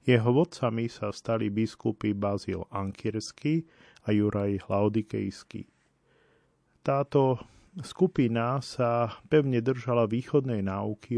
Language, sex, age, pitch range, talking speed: Slovak, male, 40-59, 100-125 Hz, 90 wpm